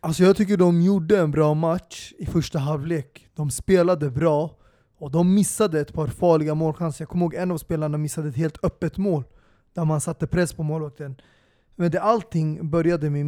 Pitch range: 155-180 Hz